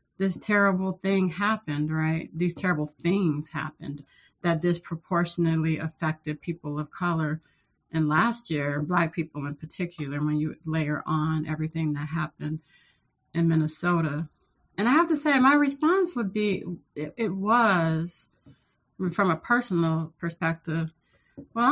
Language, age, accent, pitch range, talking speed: English, 40-59, American, 160-205 Hz, 130 wpm